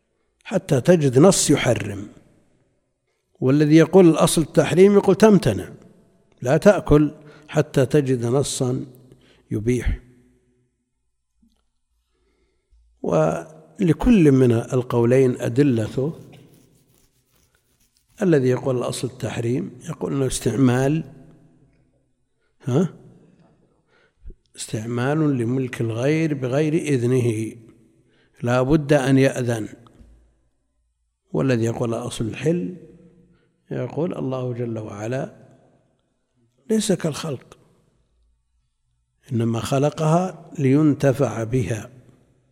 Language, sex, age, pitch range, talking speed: Arabic, male, 60-79, 120-150 Hz, 70 wpm